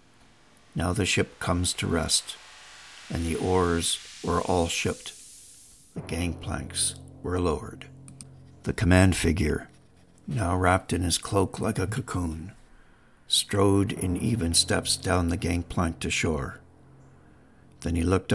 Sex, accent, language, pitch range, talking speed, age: male, American, English, 85-95 Hz, 130 wpm, 60-79